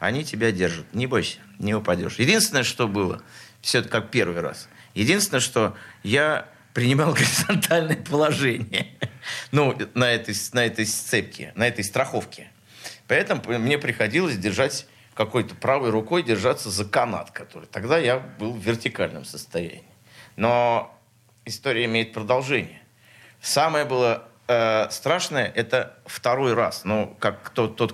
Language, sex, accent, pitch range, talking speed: Russian, male, native, 105-130 Hz, 135 wpm